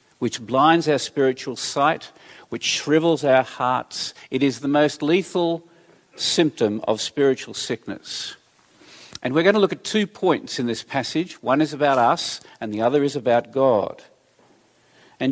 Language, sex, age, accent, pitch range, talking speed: English, male, 50-69, Australian, 130-160 Hz, 155 wpm